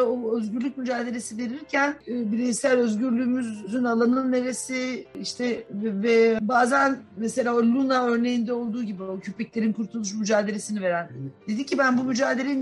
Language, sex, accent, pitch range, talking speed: Turkish, female, native, 215-255 Hz, 120 wpm